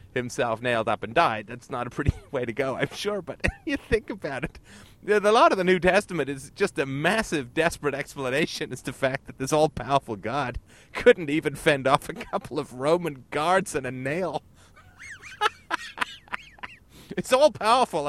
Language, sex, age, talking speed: English, male, 30-49, 175 wpm